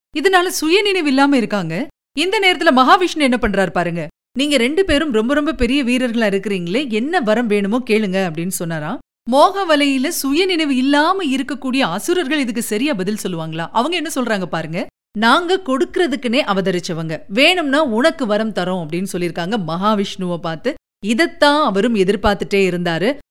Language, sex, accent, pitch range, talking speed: Tamil, female, native, 195-290 Hz, 125 wpm